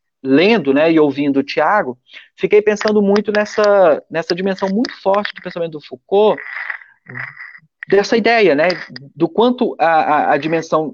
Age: 40-59